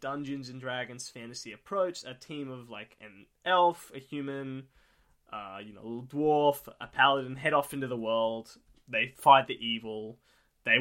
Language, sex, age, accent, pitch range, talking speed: English, male, 10-29, Australian, 115-140 Hz, 170 wpm